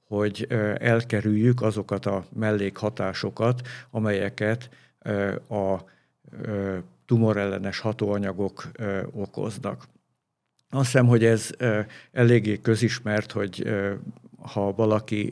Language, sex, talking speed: Hungarian, male, 75 wpm